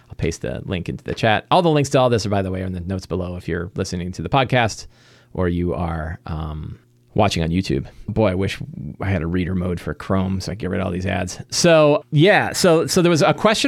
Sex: male